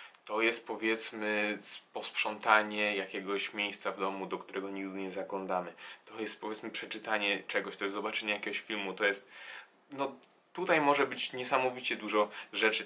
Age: 10-29